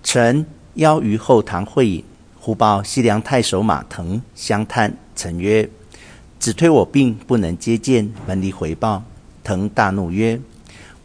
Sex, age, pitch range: male, 50-69, 95-120 Hz